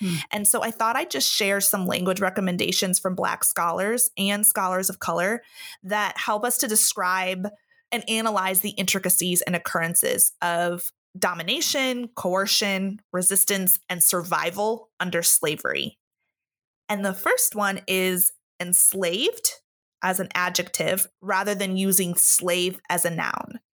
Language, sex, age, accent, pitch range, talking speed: English, female, 30-49, American, 180-215 Hz, 130 wpm